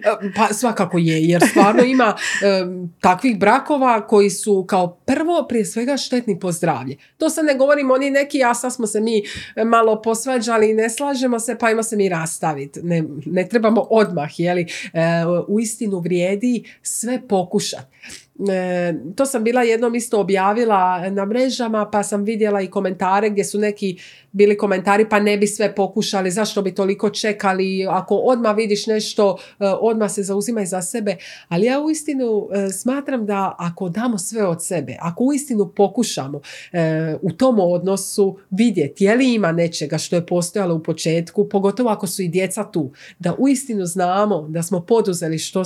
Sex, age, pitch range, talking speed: female, 40-59, 175-225 Hz, 175 wpm